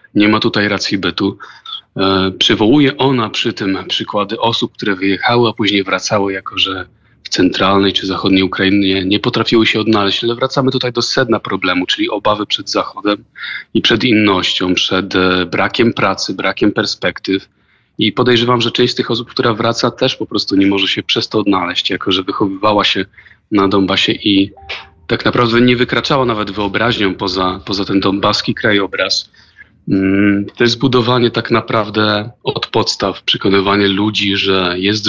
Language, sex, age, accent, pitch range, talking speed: Polish, male, 30-49, native, 95-115 Hz, 160 wpm